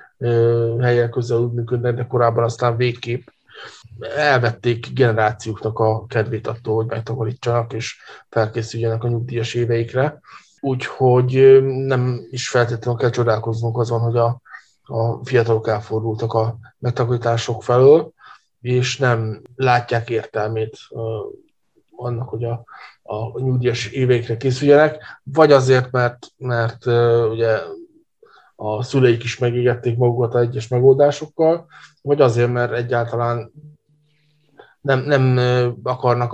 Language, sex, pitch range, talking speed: Hungarian, male, 115-130 Hz, 110 wpm